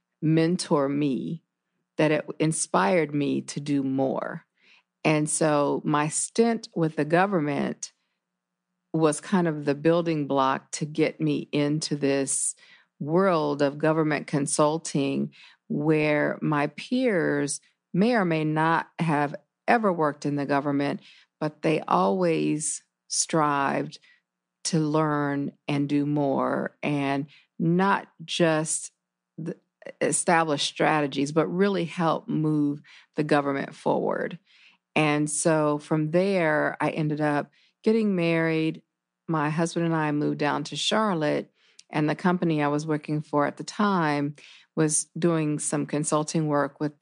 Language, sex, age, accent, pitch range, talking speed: English, female, 50-69, American, 145-160 Hz, 125 wpm